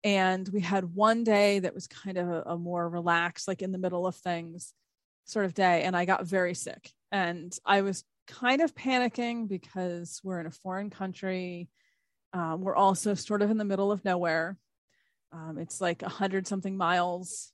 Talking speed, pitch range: 190 wpm, 180-205 Hz